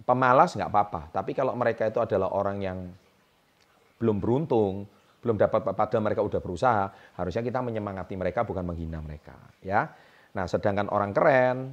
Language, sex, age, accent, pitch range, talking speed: Indonesian, male, 30-49, native, 90-110 Hz, 155 wpm